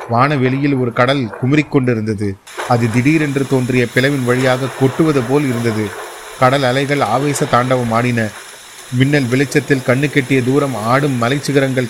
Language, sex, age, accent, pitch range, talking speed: Tamil, male, 30-49, native, 120-140 Hz, 120 wpm